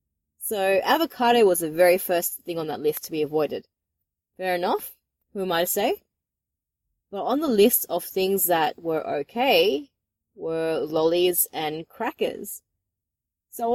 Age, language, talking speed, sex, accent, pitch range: 20-39, English, 150 wpm, female, Australian, 165-250 Hz